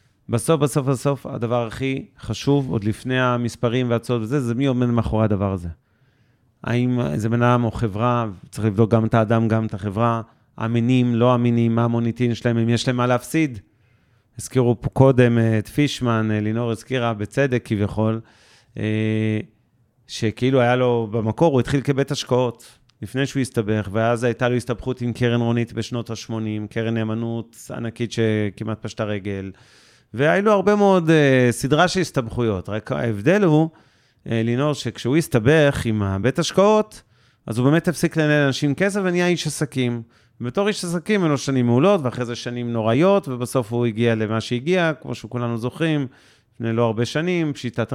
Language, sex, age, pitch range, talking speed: Hebrew, male, 30-49, 115-140 Hz, 160 wpm